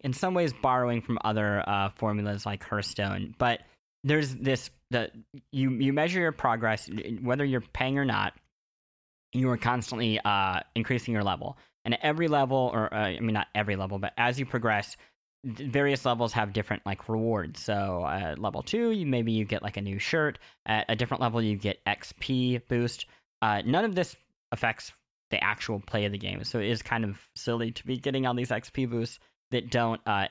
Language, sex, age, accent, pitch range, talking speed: English, male, 20-39, American, 105-130 Hz, 195 wpm